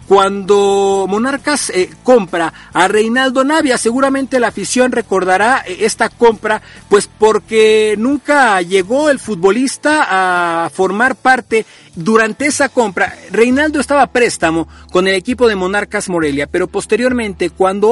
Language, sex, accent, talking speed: Spanish, male, Mexican, 125 wpm